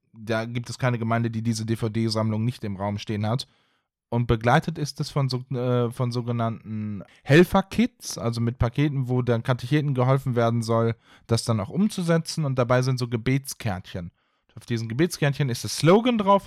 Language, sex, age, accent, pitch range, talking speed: German, male, 10-29, German, 120-155 Hz, 175 wpm